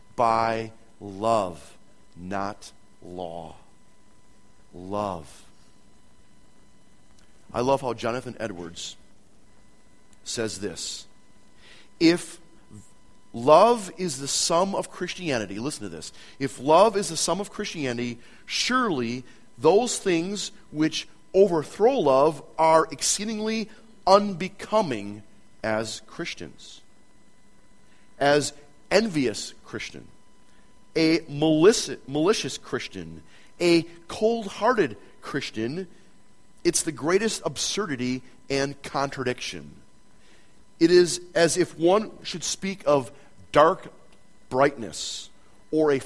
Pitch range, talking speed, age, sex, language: 110-180 Hz, 85 wpm, 40-59, male, English